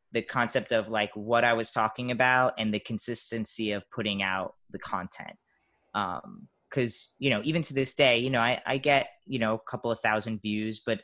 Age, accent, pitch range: 20-39, American, 100-115 Hz